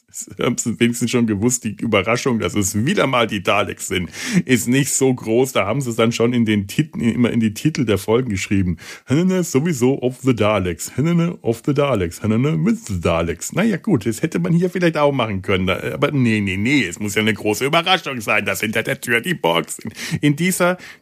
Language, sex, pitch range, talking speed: German, male, 105-150 Hz, 215 wpm